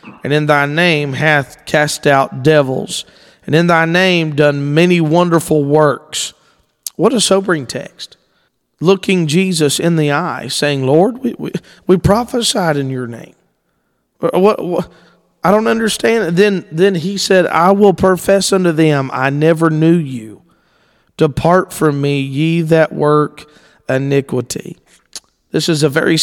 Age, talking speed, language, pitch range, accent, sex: 40-59, 145 wpm, English, 140-180 Hz, American, male